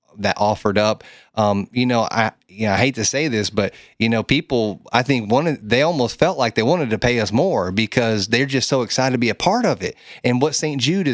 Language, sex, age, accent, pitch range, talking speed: English, male, 30-49, American, 105-125 Hz, 255 wpm